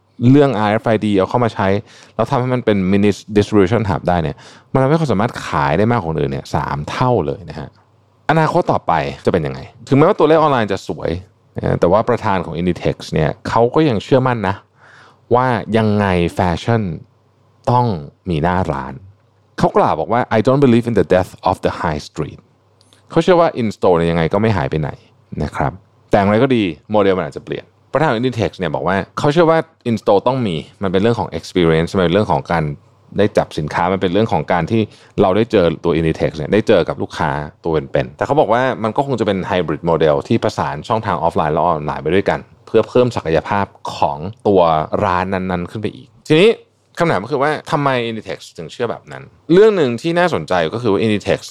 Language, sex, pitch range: Thai, male, 95-125 Hz